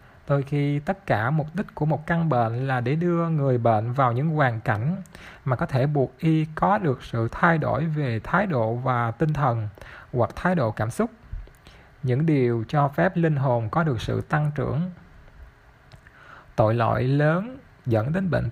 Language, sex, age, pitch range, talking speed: Vietnamese, male, 20-39, 125-165 Hz, 185 wpm